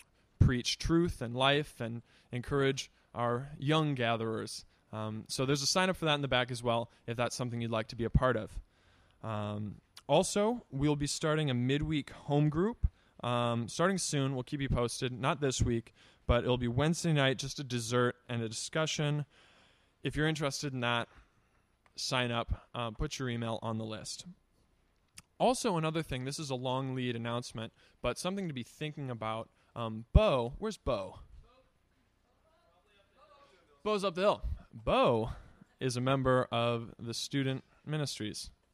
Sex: male